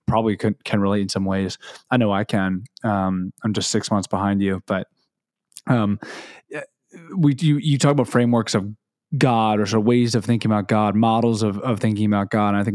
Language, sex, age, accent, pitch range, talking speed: English, male, 20-39, American, 105-120 Hz, 210 wpm